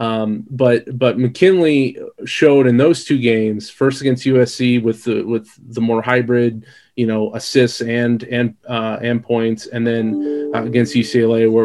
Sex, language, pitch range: male, English, 110-125 Hz